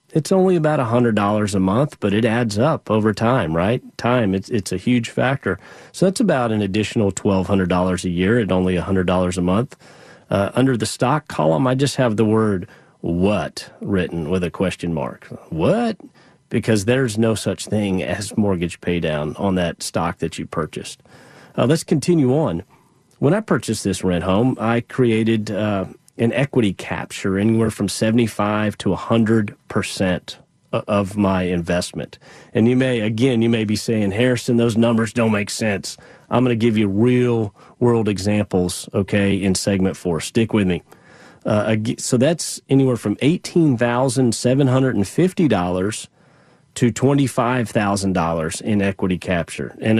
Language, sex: English, male